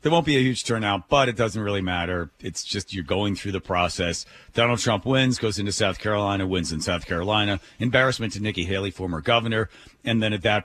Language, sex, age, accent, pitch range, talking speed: English, male, 40-59, American, 95-115 Hz, 220 wpm